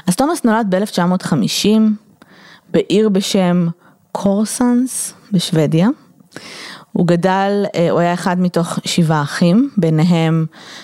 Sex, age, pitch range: female, 20-39, 165-215 Hz